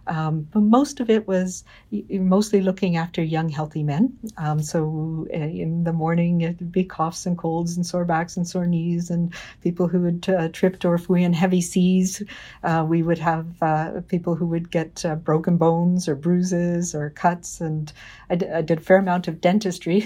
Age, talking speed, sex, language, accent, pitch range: 50-69, 195 wpm, female, English, American, 160-190 Hz